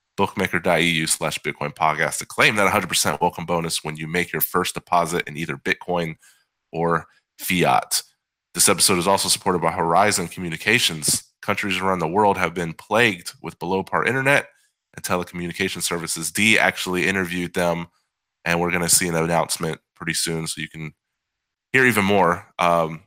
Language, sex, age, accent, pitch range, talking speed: English, male, 20-39, American, 85-95 Hz, 160 wpm